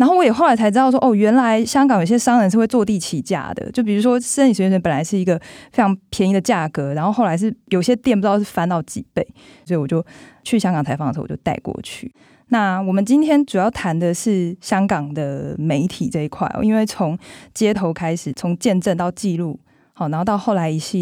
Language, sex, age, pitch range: Chinese, female, 20-39, 165-215 Hz